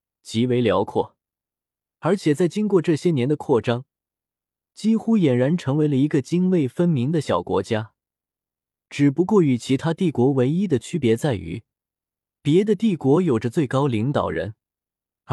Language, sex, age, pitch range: Chinese, male, 20-39, 120-170 Hz